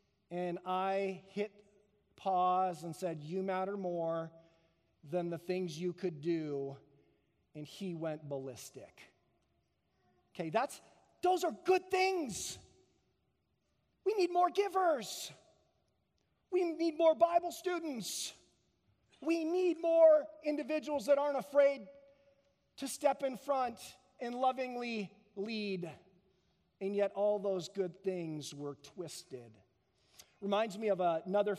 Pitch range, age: 170-210 Hz, 40-59